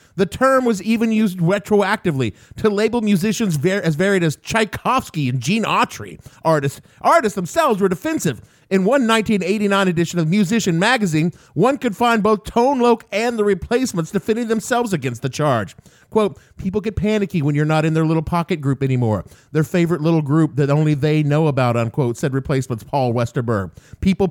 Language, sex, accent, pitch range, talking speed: English, male, American, 145-220 Hz, 175 wpm